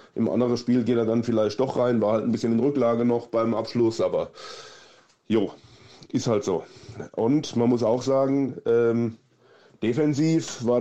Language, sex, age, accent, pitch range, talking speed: German, male, 20-39, German, 110-125 Hz, 170 wpm